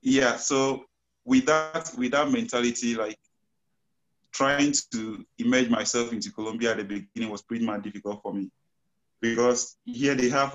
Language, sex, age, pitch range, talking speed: English, male, 20-39, 105-135 Hz, 155 wpm